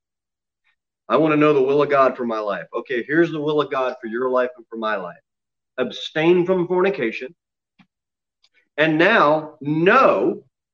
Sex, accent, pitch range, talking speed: male, American, 120-180 Hz, 170 wpm